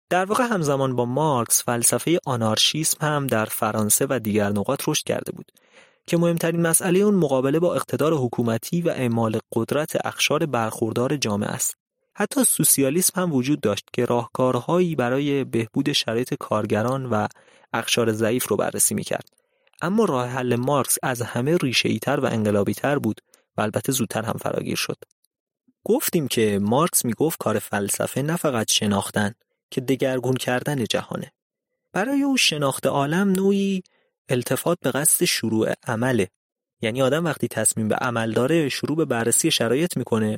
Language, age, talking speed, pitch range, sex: Persian, 30-49, 150 wpm, 115-165 Hz, male